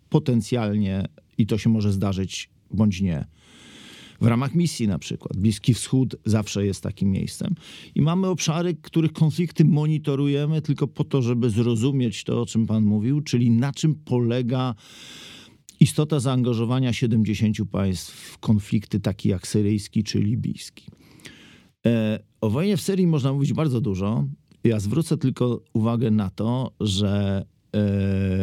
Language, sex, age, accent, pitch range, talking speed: Polish, male, 50-69, native, 100-125 Hz, 140 wpm